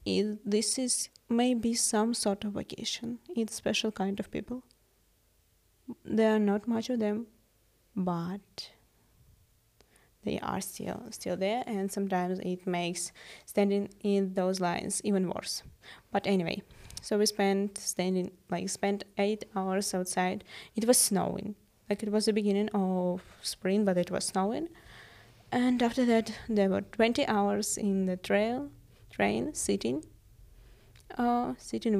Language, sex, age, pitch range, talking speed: Ukrainian, female, 20-39, 190-225 Hz, 140 wpm